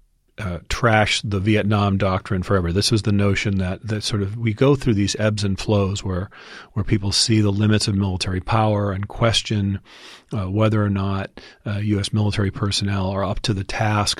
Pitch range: 95-110 Hz